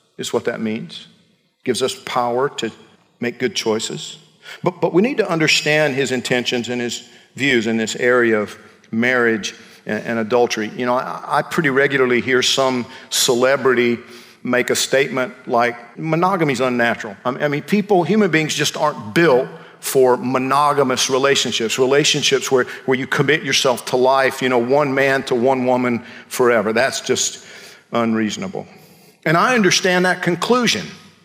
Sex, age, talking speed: male, 50-69, 155 wpm